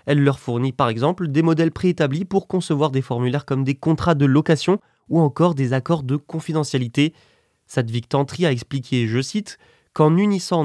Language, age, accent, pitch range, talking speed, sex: French, 20-39, French, 130-170 Hz, 175 wpm, male